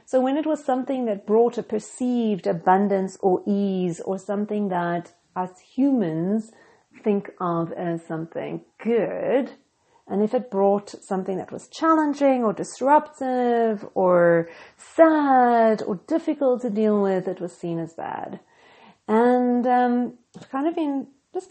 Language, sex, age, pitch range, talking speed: English, female, 40-59, 205-295 Hz, 140 wpm